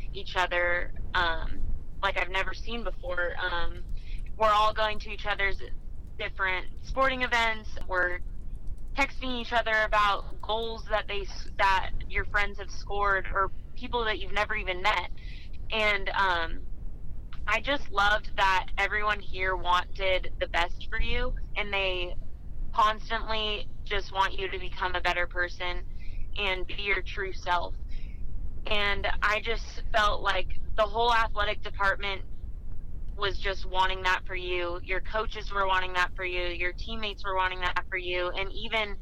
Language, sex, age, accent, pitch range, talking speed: English, female, 20-39, American, 180-210 Hz, 150 wpm